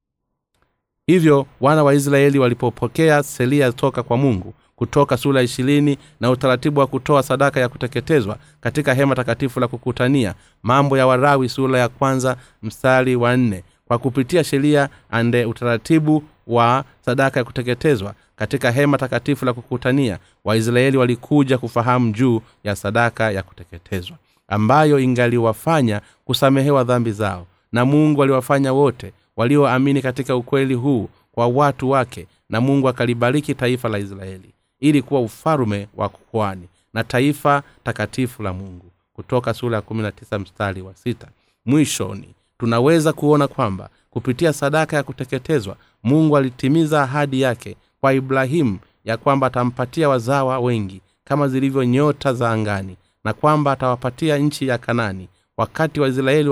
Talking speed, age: 135 wpm, 30-49